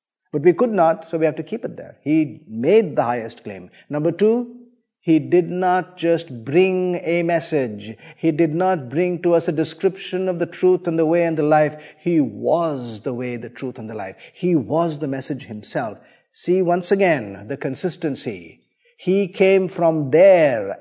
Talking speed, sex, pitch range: 185 wpm, male, 140-175 Hz